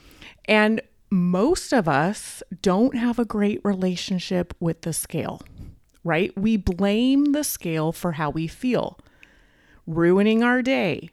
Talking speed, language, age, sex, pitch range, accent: 130 wpm, English, 30-49, female, 175-235 Hz, American